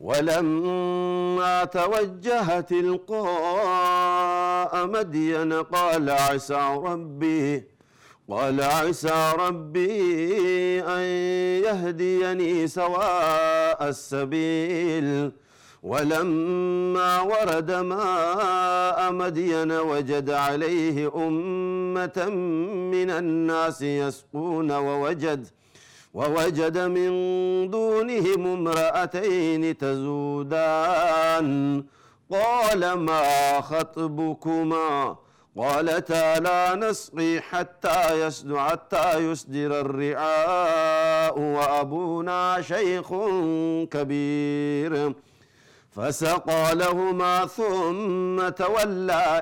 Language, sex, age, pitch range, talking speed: Amharic, male, 50-69, 150-180 Hz, 55 wpm